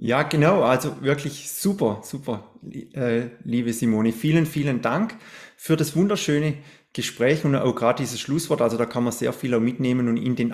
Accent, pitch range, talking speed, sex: German, 120-150 Hz, 175 wpm, male